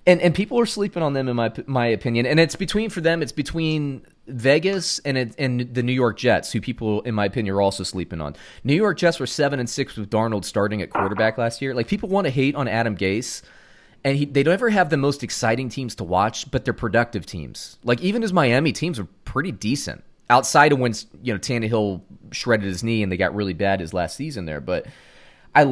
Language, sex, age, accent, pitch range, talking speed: English, male, 30-49, American, 110-145 Hz, 230 wpm